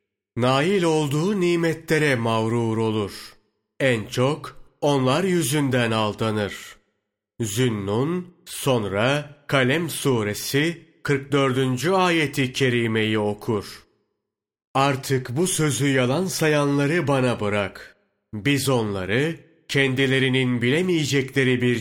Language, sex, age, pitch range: Turkish, male, 40-59, 120-145 Hz